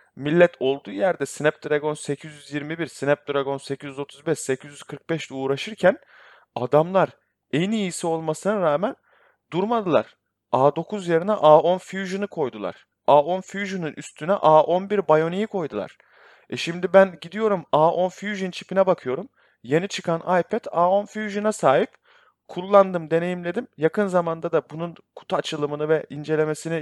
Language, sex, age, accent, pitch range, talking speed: Turkish, male, 30-49, native, 140-190 Hz, 115 wpm